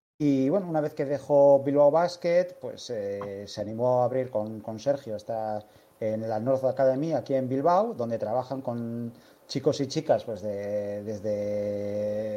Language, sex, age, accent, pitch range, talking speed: Spanish, male, 30-49, Spanish, 125-150 Hz, 165 wpm